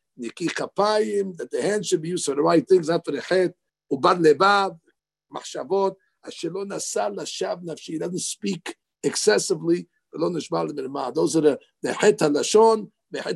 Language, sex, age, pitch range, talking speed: English, male, 50-69, 185-290 Hz, 95 wpm